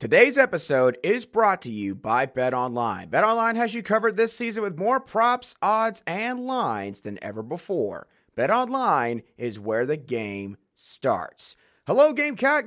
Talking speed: 160 wpm